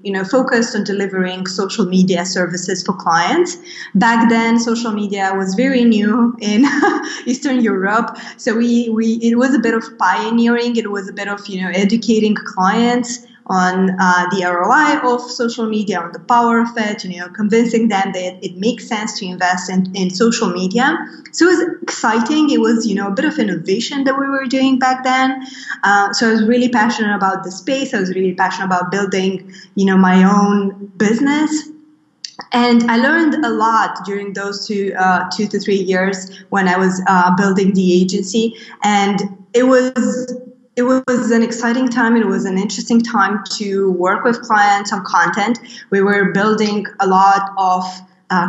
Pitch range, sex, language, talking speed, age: 190-240 Hz, female, English, 185 wpm, 20-39